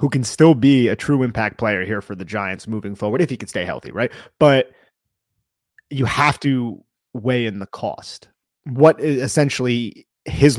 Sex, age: male, 30-49